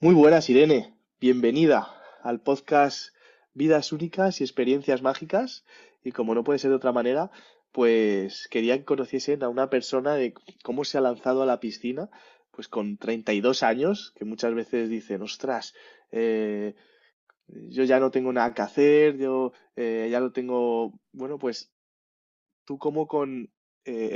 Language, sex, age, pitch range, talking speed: Spanish, male, 20-39, 115-140 Hz, 150 wpm